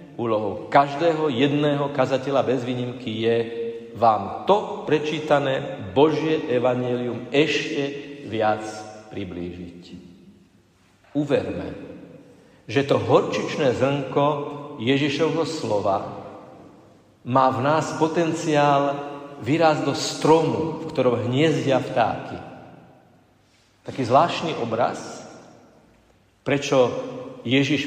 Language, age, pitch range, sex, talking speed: Slovak, 50-69, 125-150 Hz, male, 80 wpm